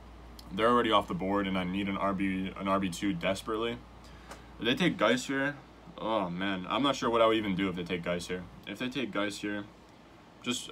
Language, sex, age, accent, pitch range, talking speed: English, male, 20-39, American, 90-120 Hz, 220 wpm